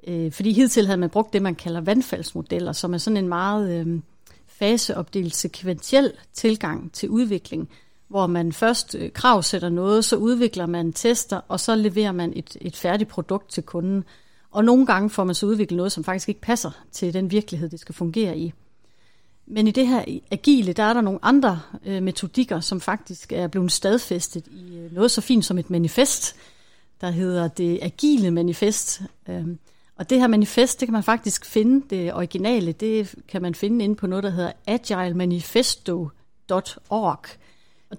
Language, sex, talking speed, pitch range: Danish, female, 170 wpm, 175-225 Hz